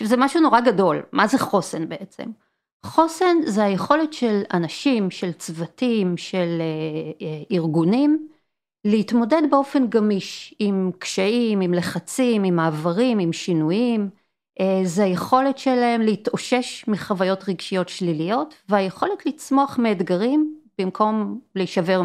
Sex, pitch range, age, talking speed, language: female, 185-255 Hz, 40-59, 115 wpm, Hebrew